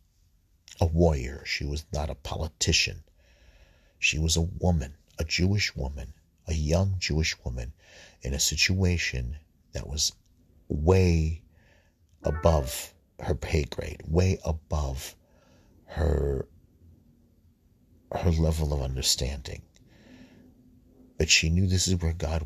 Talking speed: 110 wpm